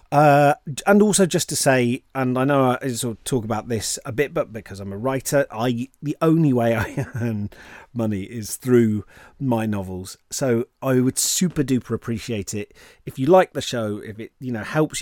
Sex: male